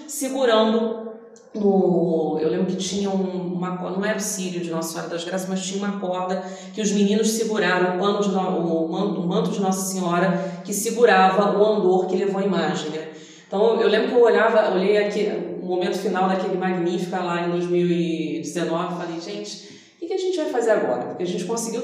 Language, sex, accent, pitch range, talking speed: Portuguese, female, Brazilian, 185-235 Hz, 190 wpm